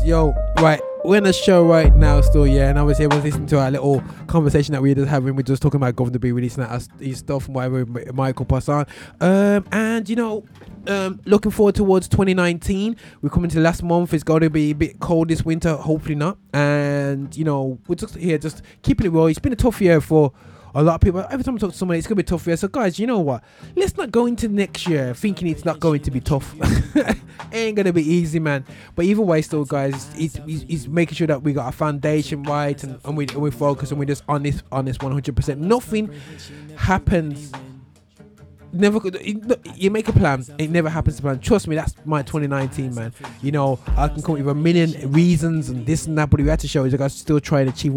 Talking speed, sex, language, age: 245 wpm, male, English, 20-39